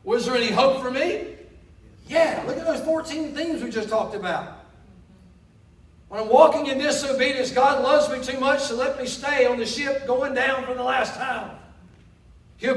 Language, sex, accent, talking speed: English, male, American, 195 wpm